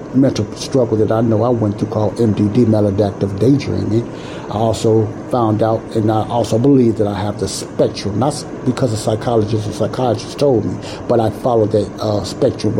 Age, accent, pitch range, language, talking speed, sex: 60-79, American, 105-125 Hz, English, 185 wpm, male